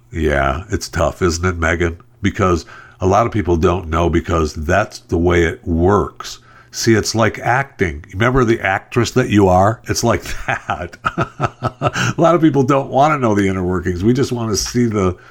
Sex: male